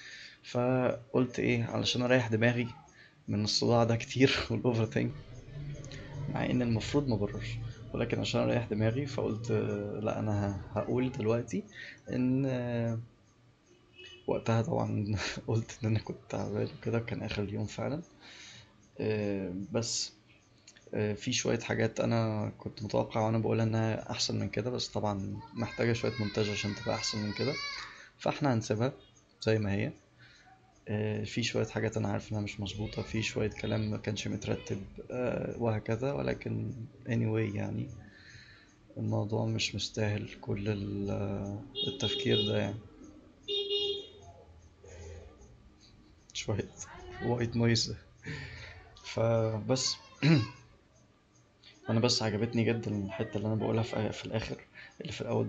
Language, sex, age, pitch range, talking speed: English, male, 20-39, 105-120 Hz, 115 wpm